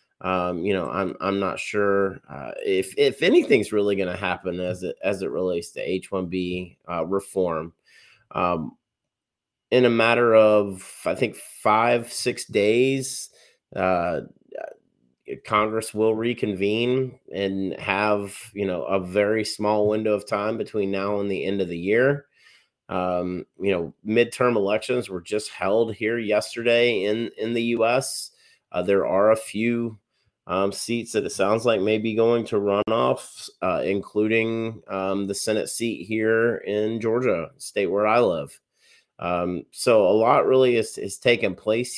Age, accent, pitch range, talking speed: 30-49, American, 95-115 Hz, 155 wpm